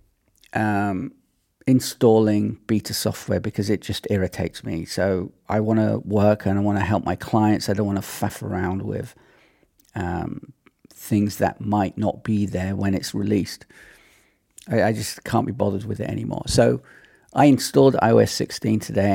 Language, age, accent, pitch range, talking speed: English, 40-59, British, 100-120 Hz, 165 wpm